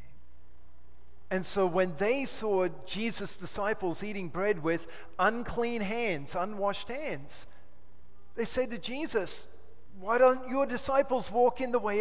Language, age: English, 40-59